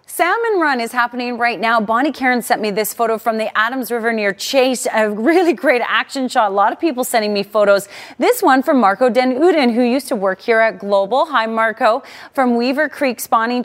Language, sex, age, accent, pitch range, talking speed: English, female, 30-49, American, 210-275 Hz, 215 wpm